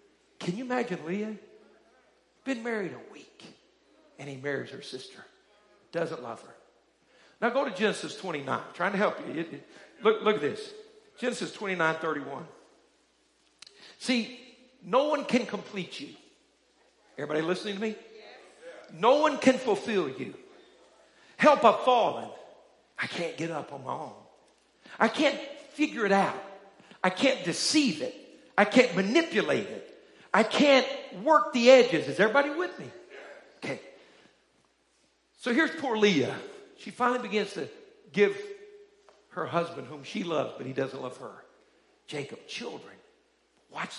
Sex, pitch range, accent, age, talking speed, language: male, 195-300 Hz, American, 50-69, 140 wpm, English